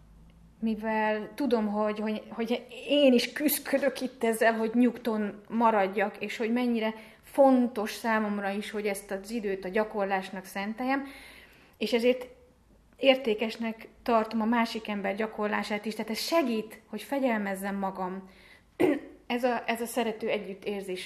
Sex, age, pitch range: female, 30-49, 195-235 Hz